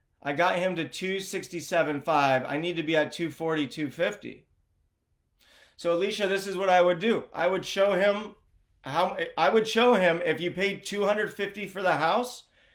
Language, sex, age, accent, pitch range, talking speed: English, male, 30-49, American, 165-200 Hz, 170 wpm